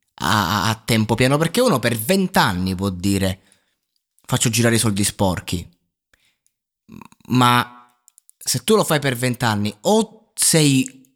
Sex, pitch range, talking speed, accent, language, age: male, 105-135 Hz, 125 wpm, native, Italian, 20-39